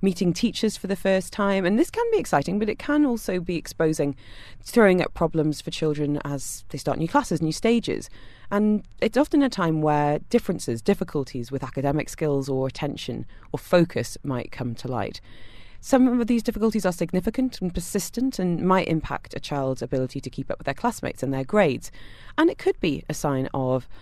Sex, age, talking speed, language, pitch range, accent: female, 30-49, 195 wpm, English, 135-215 Hz, British